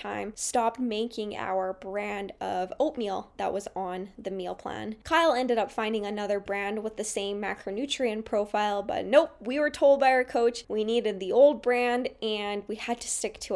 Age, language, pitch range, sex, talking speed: 10-29, English, 205-255 Hz, female, 185 wpm